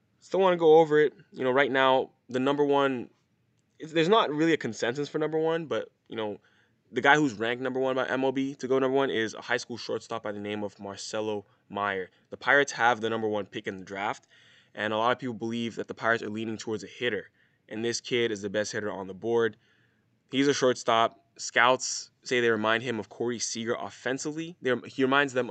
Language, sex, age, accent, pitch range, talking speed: English, male, 20-39, American, 110-135 Hz, 225 wpm